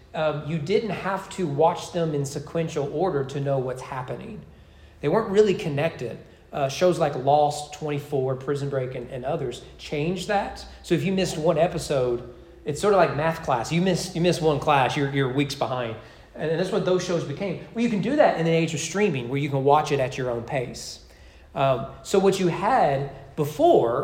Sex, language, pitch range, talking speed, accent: male, English, 130-175 Hz, 210 wpm, American